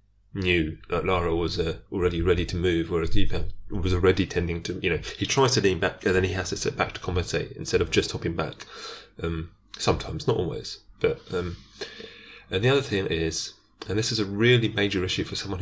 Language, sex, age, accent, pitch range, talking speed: English, male, 30-49, British, 85-105 Hz, 215 wpm